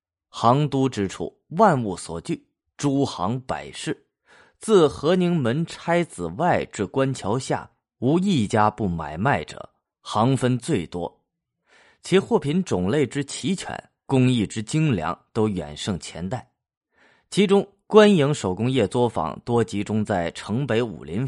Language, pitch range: Chinese, 100-155 Hz